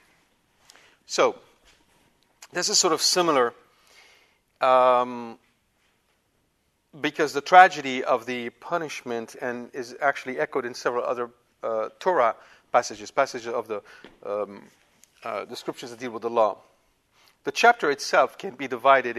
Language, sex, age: English, male, 50-69